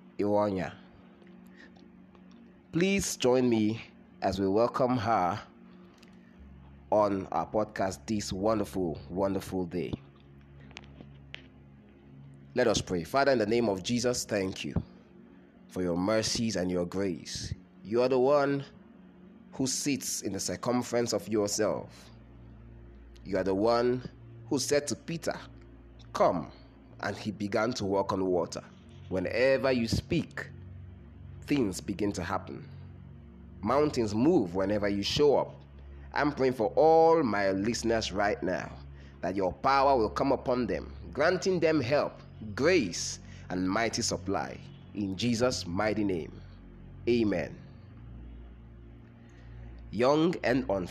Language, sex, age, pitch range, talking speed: English, male, 20-39, 70-120 Hz, 120 wpm